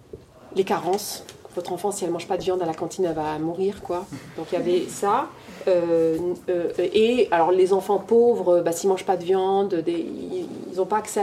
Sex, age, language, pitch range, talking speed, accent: female, 30-49, French, 170-205 Hz, 225 wpm, French